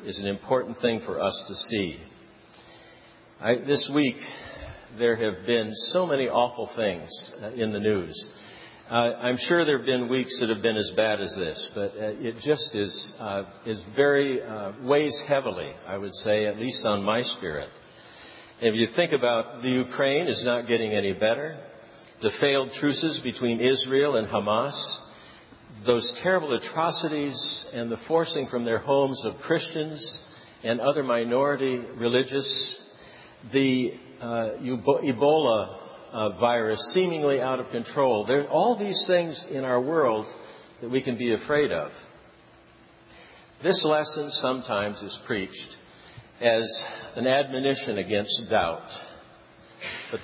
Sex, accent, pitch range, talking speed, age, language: male, American, 115-145 Hz, 140 wpm, 50-69, English